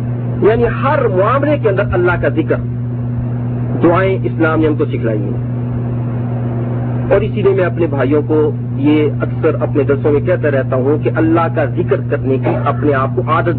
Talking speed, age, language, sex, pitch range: 170 wpm, 40-59, Urdu, male, 120-130 Hz